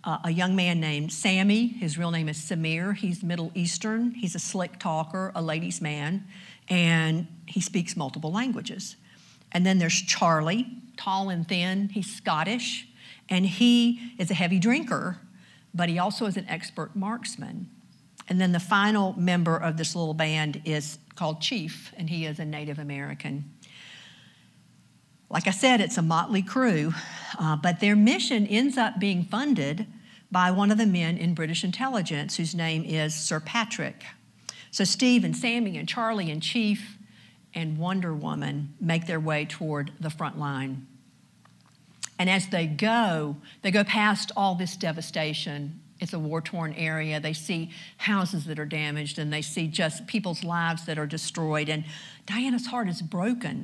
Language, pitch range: English, 155-200 Hz